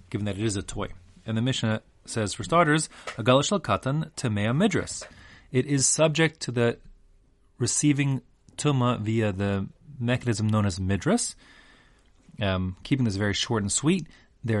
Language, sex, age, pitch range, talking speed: English, male, 30-49, 100-130 Hz, 150 wpm